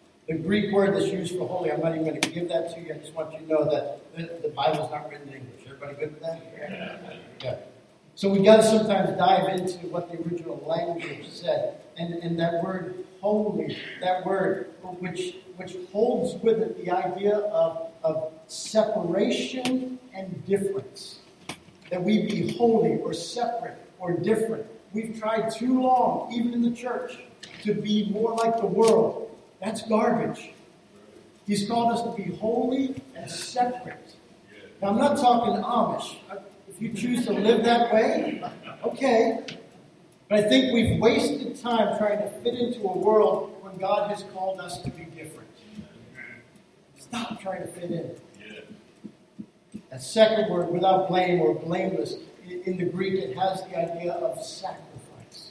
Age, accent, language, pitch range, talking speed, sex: 50-69, American, English, 175-225 Hz, 165 wpm, male